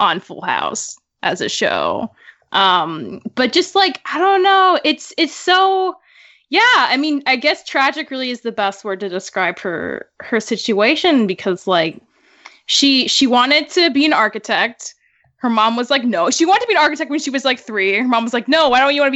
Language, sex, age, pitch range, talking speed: English, female, 10-29, 215-290 Hz, 210 wpm